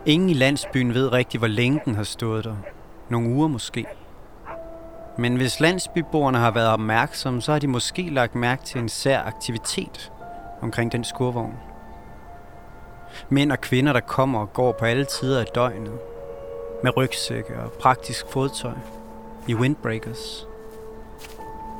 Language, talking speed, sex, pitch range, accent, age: Danish, 145 wpm, male, 110-140 Hz, native, 30-49